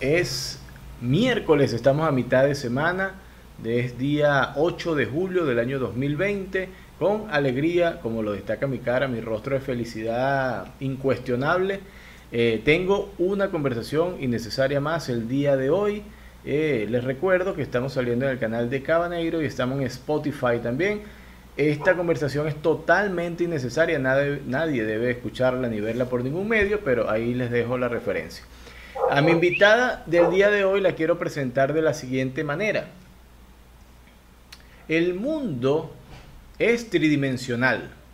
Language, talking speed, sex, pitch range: Spanish, 145 wpm, male, 125-195 Hz